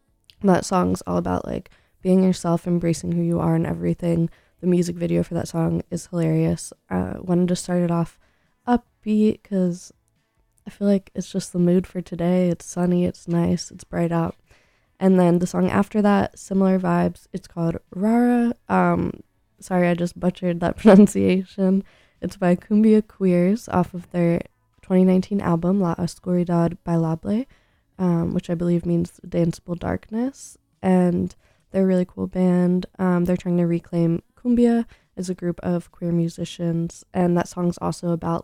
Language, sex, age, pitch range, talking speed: English, female, 20-39, 170-190 Hz, 165 wpm